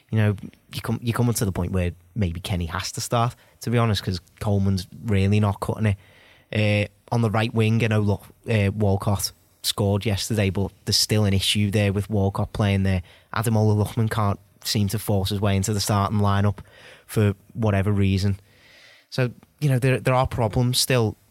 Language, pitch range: English, 100-115 Hz